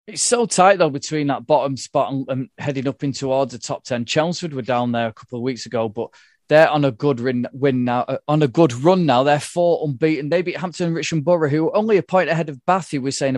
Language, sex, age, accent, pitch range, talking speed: English, male, 20-39, British, 125-160 Hz, 265 wpm